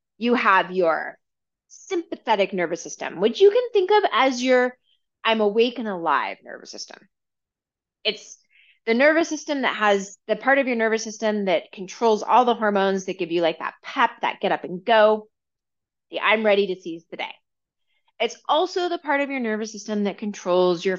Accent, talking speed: American, 185 wpm